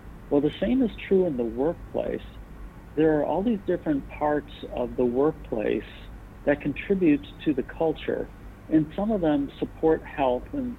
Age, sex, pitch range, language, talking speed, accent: 50-69, male, 115-150 Hz, English, 160 wpm, American